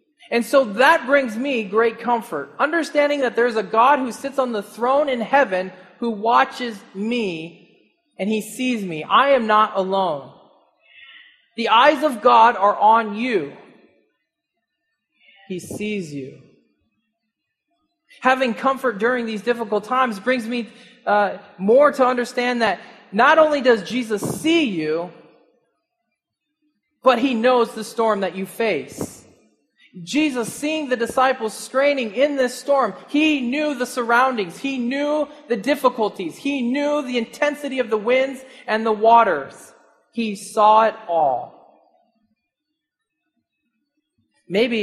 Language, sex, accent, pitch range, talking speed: English, male, American, 205-270 Hz, 130 wpm